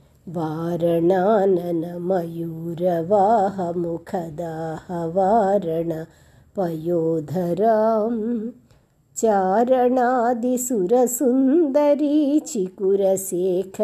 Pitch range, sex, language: 175-280 Hz, female, Telugu